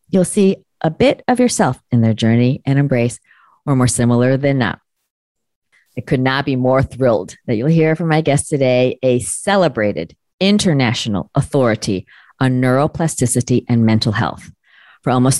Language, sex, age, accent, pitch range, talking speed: English, female, 40-59, American, 110-135 Hz, 155 wpm